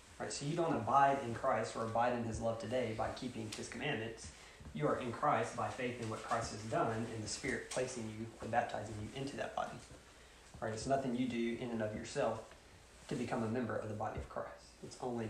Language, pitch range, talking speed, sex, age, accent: English, 105-125 Hz, 235 wpm, male, 20-39, American